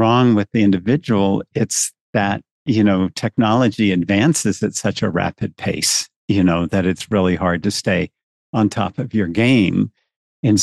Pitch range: 95-125 Hz